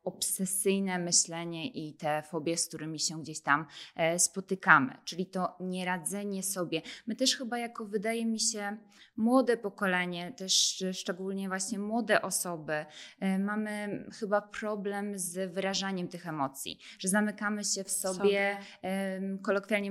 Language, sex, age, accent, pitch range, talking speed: Polish, female, 20-39, native, 185-210 Hz, 125 wpm